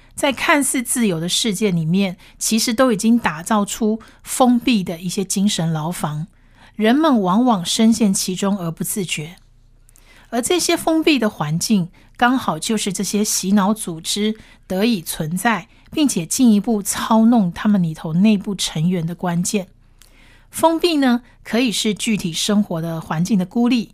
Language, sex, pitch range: Chinese, female, 180-235 Hz